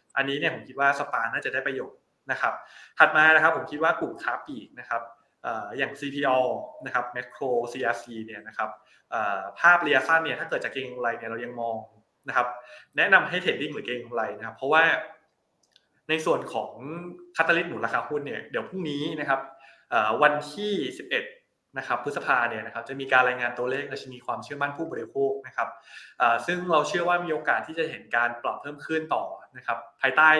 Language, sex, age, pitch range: Thai, male, 20-39, 125-155 Hz